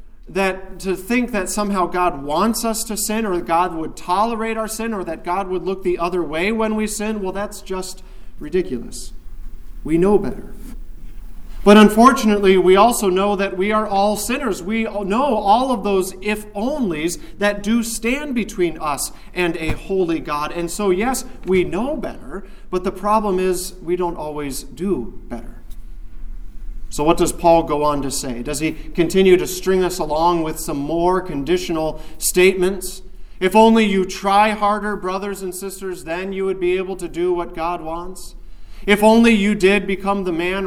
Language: English